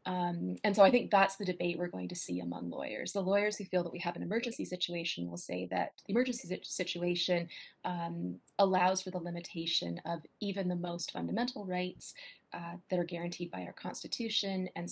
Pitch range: 170-200 Hz